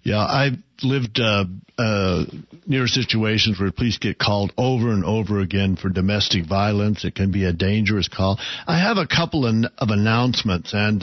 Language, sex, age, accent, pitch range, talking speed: English, male, 60-79, American, 105-135 Hz, 175 wpm